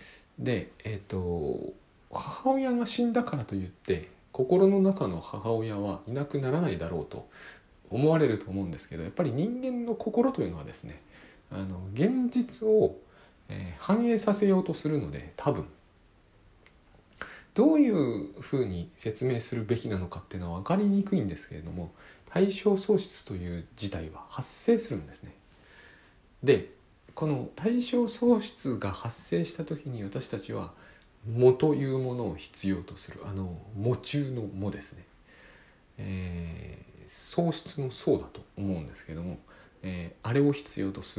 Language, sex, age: Japanese, male, 40-59